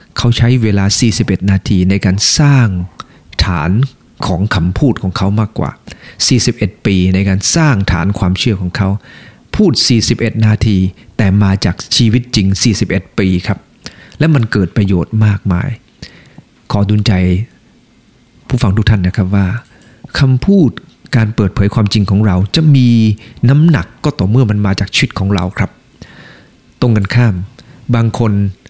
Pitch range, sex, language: 95-125 Hz, male, English